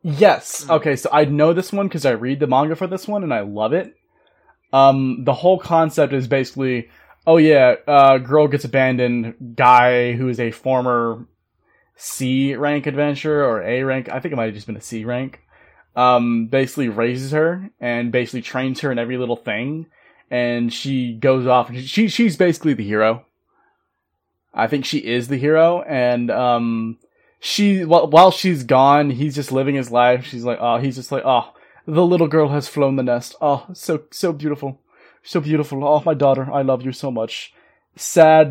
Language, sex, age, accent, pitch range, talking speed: English, male, 20-39, American, 125-155 Hz, 180 wpm